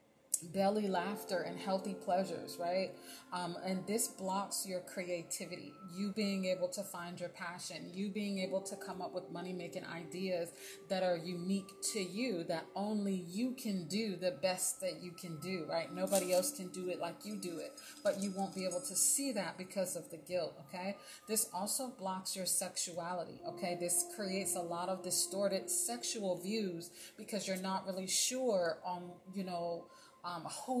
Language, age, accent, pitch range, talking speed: English, 30-49, American, 175-205 Hz, 175 wpm